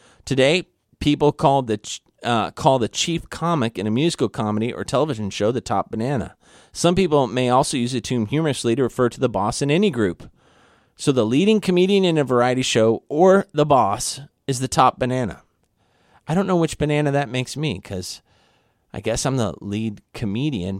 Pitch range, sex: 105-150 Hz, male